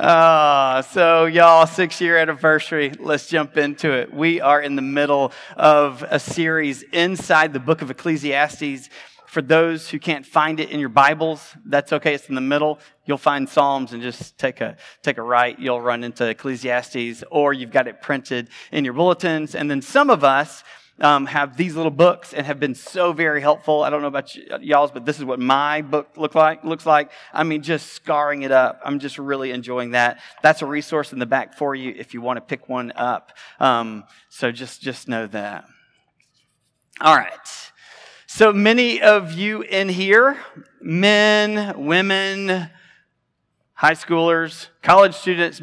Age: 30-49